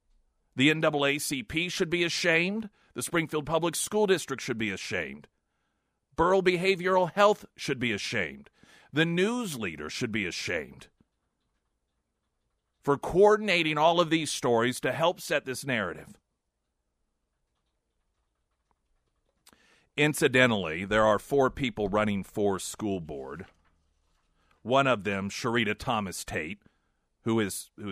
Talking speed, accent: 110 wpm, American